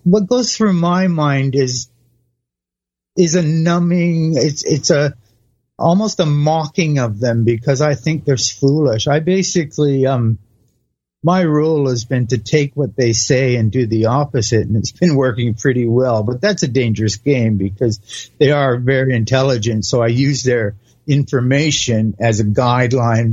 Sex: male